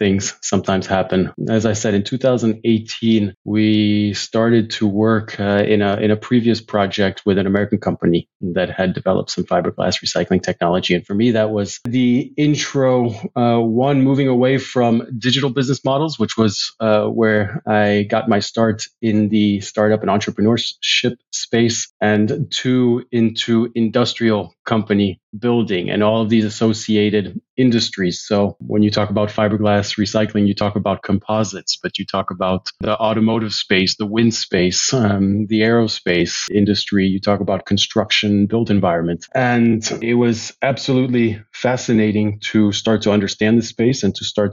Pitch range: 100-115 Hz